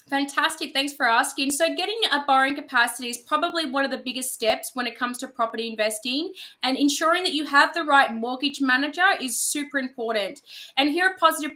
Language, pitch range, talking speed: English, 255-300 Hz, 195 wpm